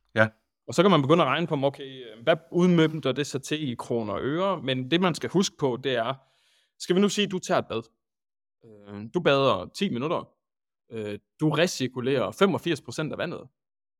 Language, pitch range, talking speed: Danish, 130-185 Hz, 195 wpm